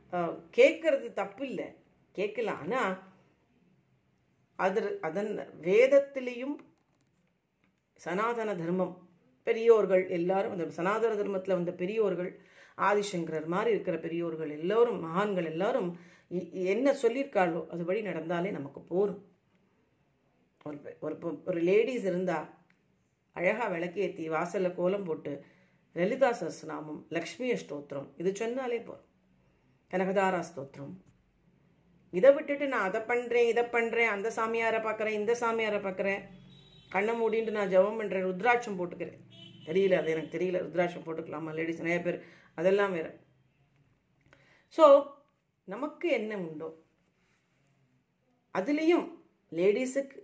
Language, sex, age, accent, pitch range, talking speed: Tamil, female, 40-59, native, 170-225 Hz, 100 wpm